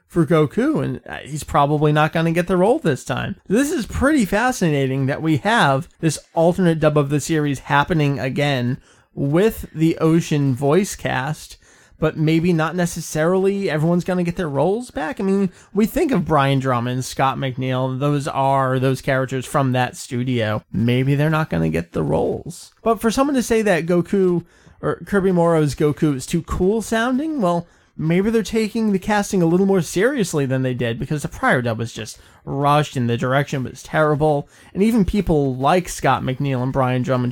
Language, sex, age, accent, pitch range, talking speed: English, male, 20-39, American, 130-180 Hz, 185 wpm